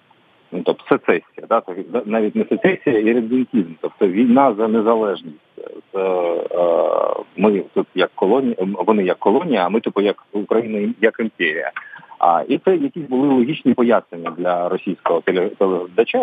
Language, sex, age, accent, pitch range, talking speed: Ukrainian, male, 40-59, native, 100-160 Hz, 135 wpm